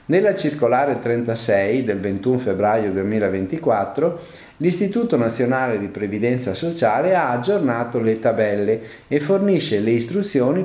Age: 50-69